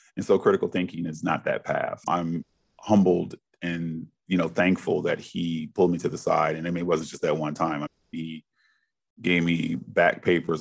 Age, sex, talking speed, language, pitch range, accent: 30-49, male, 200 wpm, English, 85-90 Hz, American